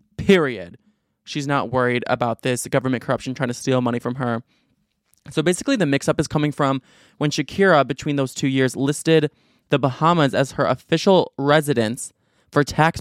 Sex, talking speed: male, 165 wpm